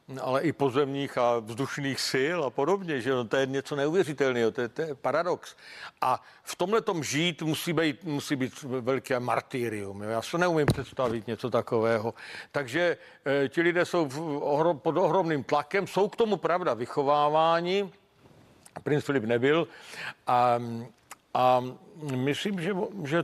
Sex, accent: male, native